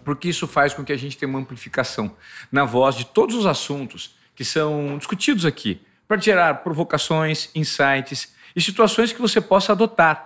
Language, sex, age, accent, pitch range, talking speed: Portuguese, male, 50-69, Brazilian, 135-175 Hz, 175 wpm